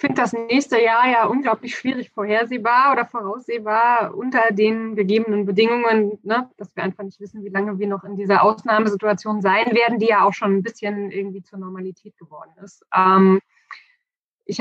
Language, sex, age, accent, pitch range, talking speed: German, female, 20-39, German, 210-255 Hz, 175 wpm